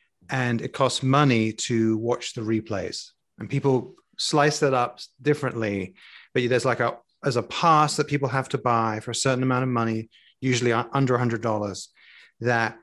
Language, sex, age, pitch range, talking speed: English, male, 30-49, 115-150 Hz, 175 wpm